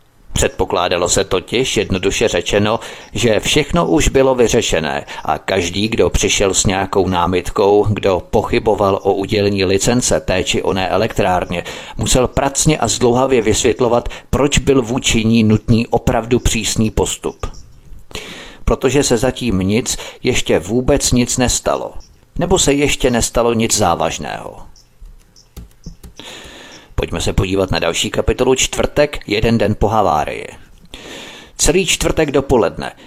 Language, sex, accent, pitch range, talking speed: Czech, male, native, 100-130 Hz, 120 wpm